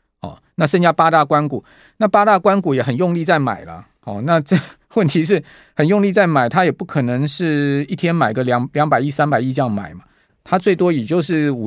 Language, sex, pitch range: Chinese, male, 130-170 Hz